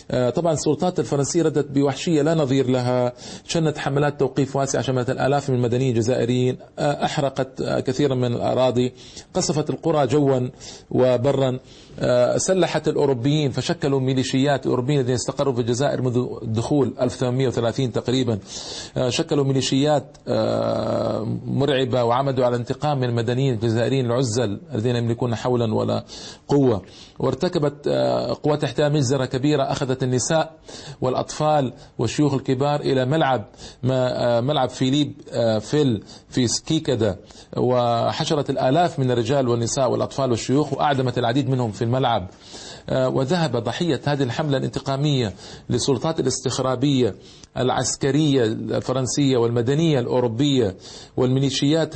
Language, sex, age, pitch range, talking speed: Arabic, male, 40-59, 120-145 Hz, 110 wpm